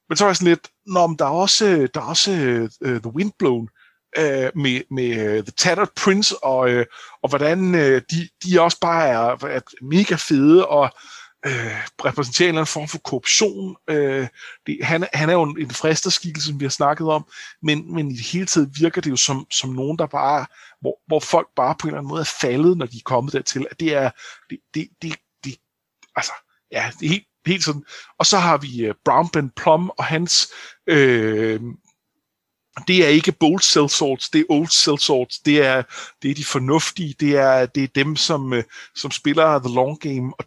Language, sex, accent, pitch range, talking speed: Danish, male, native, 135-165 Hz, 200 wpm